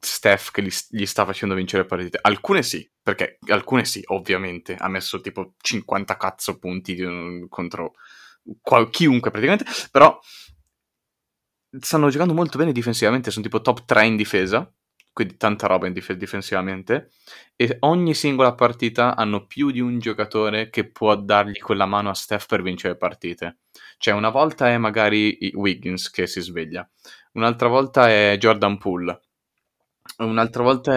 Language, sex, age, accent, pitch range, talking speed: Italian, male, 20-39, native, 95-115 Hz, 145 wpm